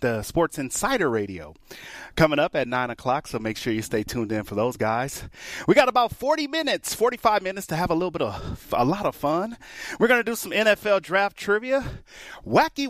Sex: male